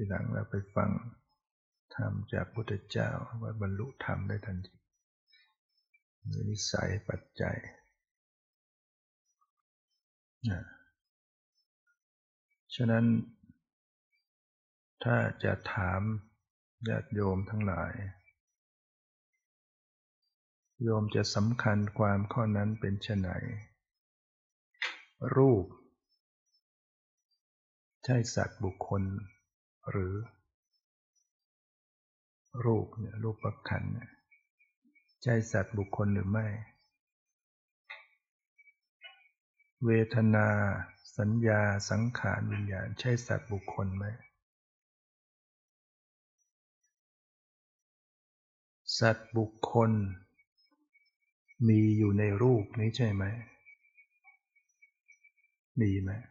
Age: 60-79